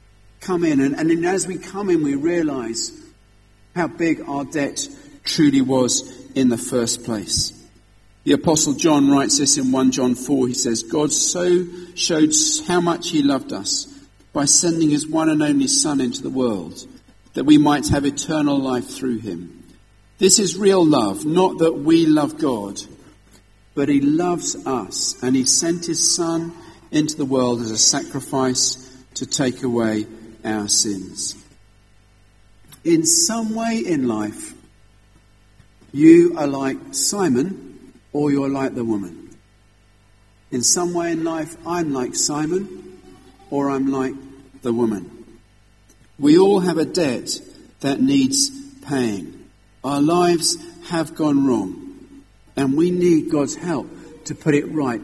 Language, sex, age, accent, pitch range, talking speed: English, male, 50-69, British, 115-180 Hz, 145 wpm